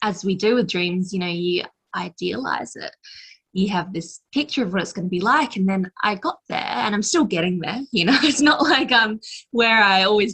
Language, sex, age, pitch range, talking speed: English, female, 20-39, 185-230 Hz, 230 wpm